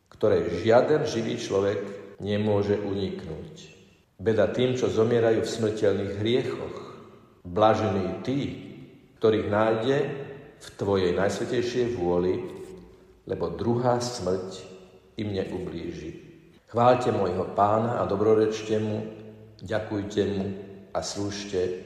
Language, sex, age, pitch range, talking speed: Slovak, male, 50-69, 100-120 Hz, 100 wpm